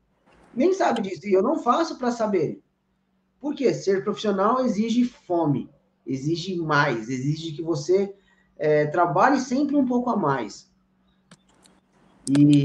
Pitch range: 170-255 Hz